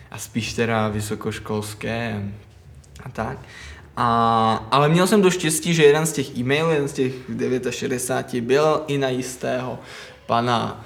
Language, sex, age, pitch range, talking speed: Czech, male, 20-39, 115-150 Hz, 140 wpm